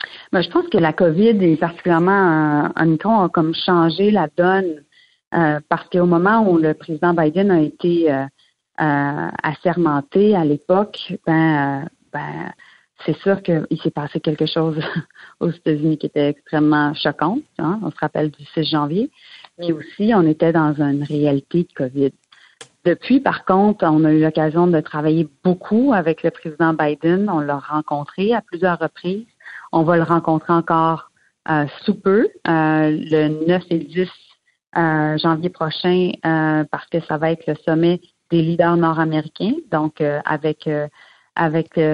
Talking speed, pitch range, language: 165 wpm, 155-180 Hz, French